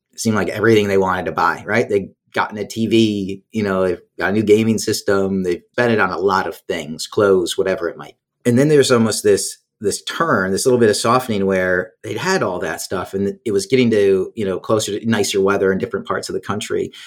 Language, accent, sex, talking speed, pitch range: English, American, male, 235 wpm, 95-130 Hz